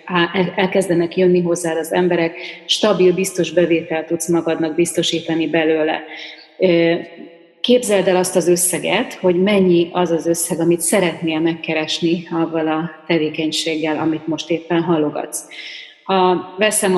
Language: Hungarian